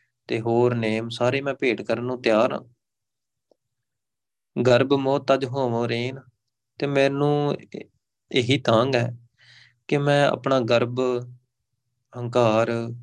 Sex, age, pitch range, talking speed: male, 30-49, 110-125 Hz, 115 wpm